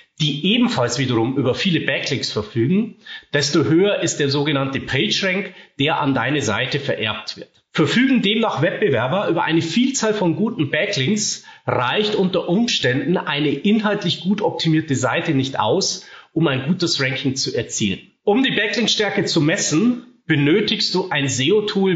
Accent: German